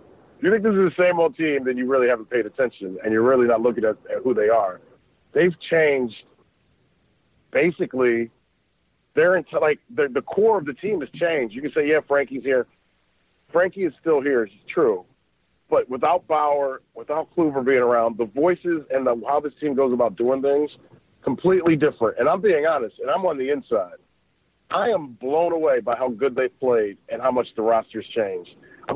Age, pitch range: 40-59, 125-165 Hz